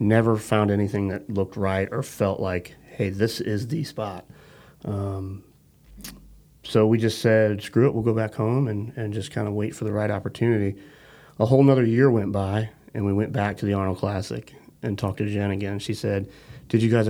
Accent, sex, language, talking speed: American, male, English, 205 wpm